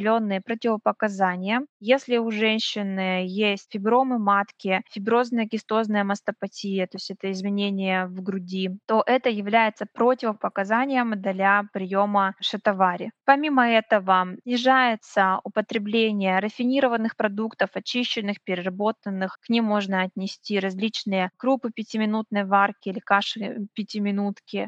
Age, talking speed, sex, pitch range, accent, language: 20-39, 100 wpm, female, 200-230 Hz, native, Russian